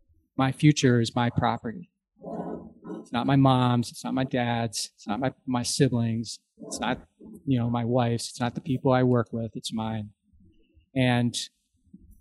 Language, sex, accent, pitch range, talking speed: English, male, American, 115-140 Hz, 165 wpm